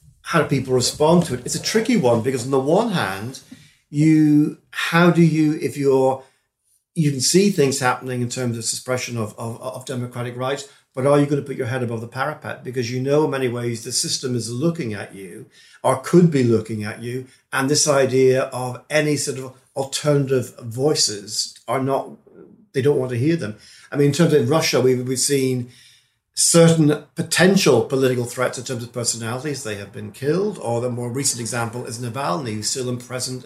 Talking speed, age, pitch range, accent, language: 205 wpm, 50-69, 120-150 Hz, British, English